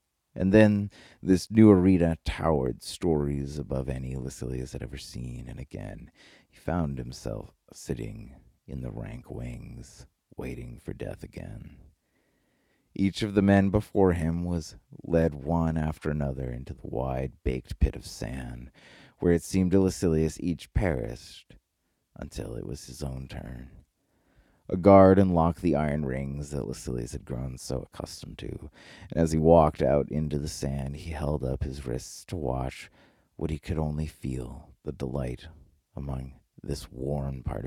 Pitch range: 65-85 Hz